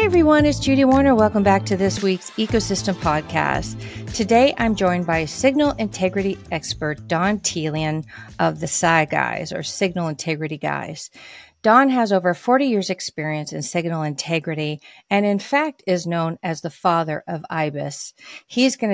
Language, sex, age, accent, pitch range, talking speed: English, female, 40-59, American, 155-200 Hz, 160 wpm